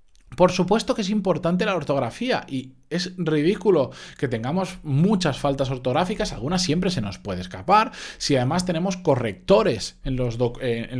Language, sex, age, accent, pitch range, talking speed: Spanish, male, 20-39, Spanish, 120-170 Hz, 140 wpm